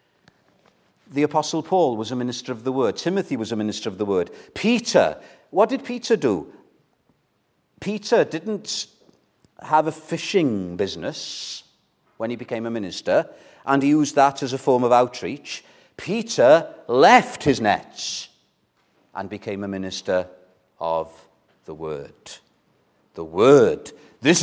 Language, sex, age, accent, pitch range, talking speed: English, male, 50-69, British, 125-165 Hz, 135 wpm